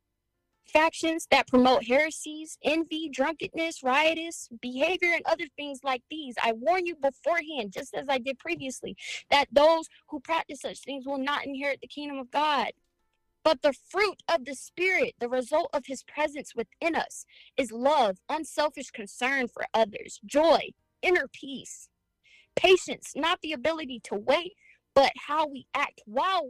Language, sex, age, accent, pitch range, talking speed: English, female, 20-39, American, 260-345 Hz, 155 wpm